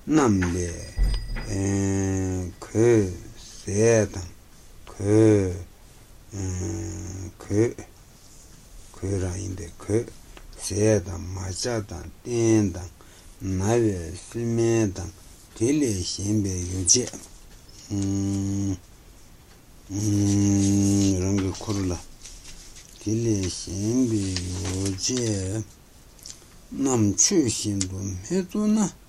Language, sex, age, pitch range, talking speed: Italian, male, 60-79, 90-110 Hz, 35 wpm